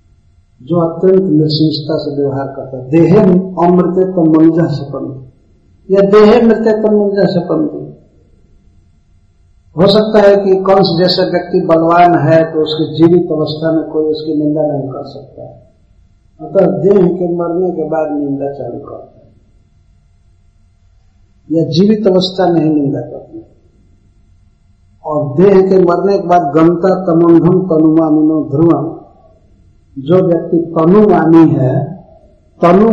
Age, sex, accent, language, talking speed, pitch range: 50-69, male, Indian, English, 75 wpm, 130-180 Hz